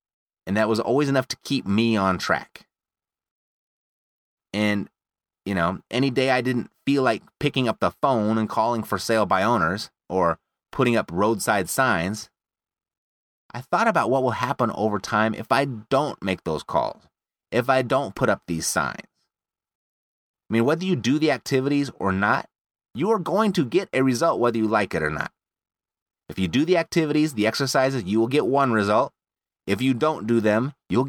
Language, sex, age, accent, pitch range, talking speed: English, male, 30-49, American, 105-140 Hz, 185 wpm